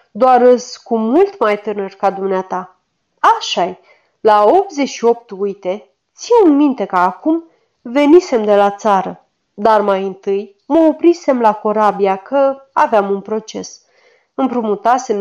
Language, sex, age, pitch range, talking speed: Romanian, female, 30-49, 200-280 Hz, 130 wpm